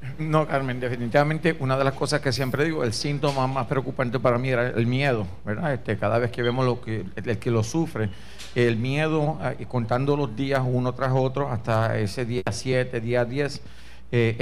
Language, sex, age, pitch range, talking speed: Spanish, male, 50-69, 120-140 Hz, 190 wpm